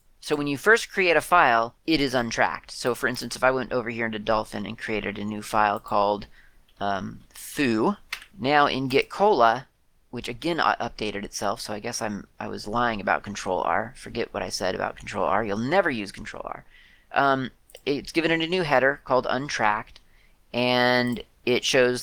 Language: English